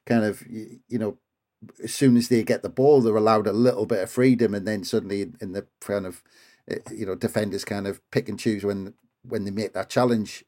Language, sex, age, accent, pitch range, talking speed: English, male, 40-59, British, 105-125 Hz, 230 wpm